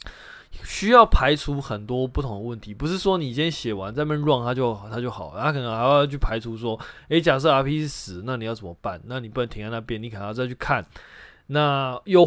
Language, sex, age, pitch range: Chinese, male, 20-39, 110-150 Hz